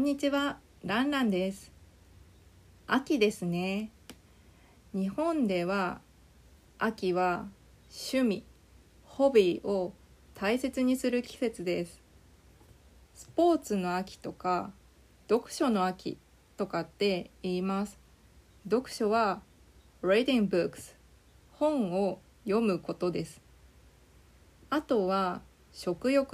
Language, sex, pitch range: Japanese, female, 175-245 Hz